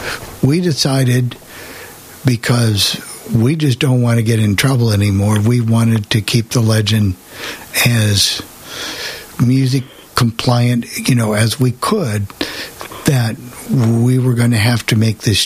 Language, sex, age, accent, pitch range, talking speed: English, male, 60-79, American, 110-130 Hz, 135 wpm